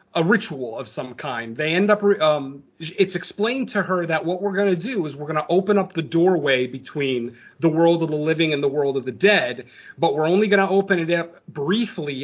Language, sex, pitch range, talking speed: English, male, 145-195 Hz, 235 wpm